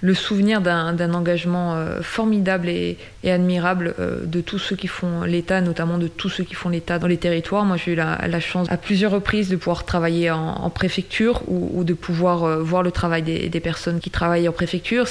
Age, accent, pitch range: 20-39, French, 170-190 Hz